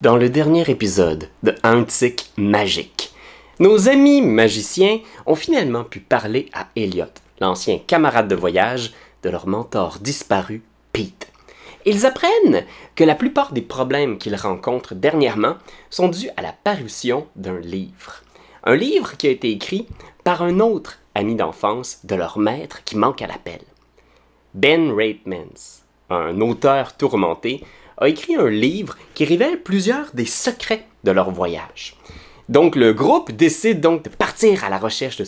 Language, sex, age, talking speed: French, male, 30-49, 150 wpm